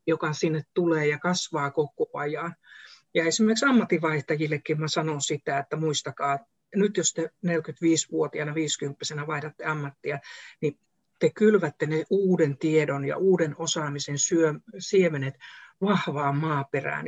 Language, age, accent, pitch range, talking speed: Finnish, 60-79, native, 150-175 Hz, 115 wpm